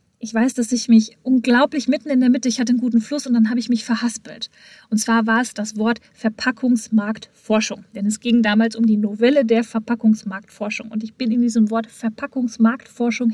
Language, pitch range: German, 215-250 Hz